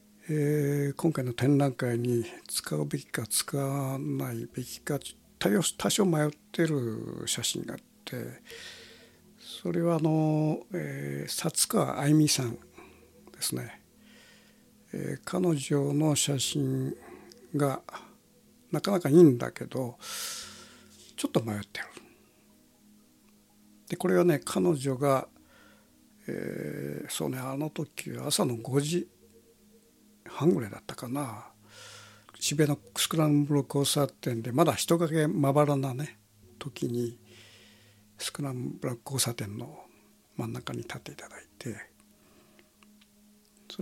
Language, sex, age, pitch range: Japanese, male, 60-79, 115-160 Hz